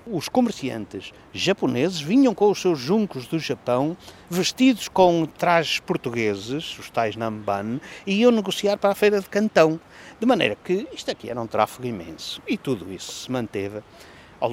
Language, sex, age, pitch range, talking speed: English, male, 60-79, 110-170 Hz, 165 wpm